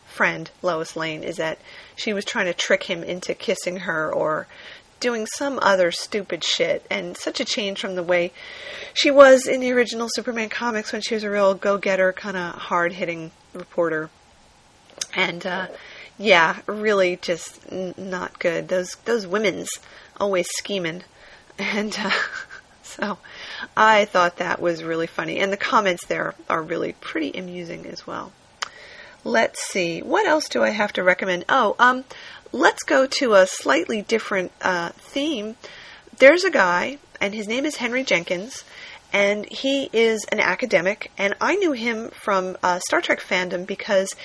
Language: English